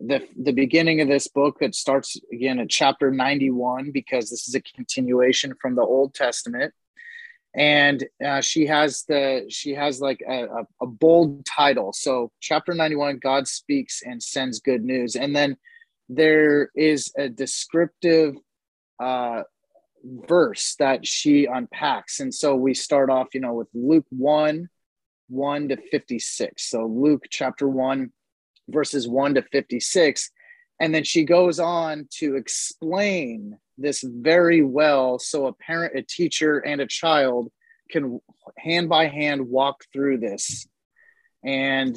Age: 30-49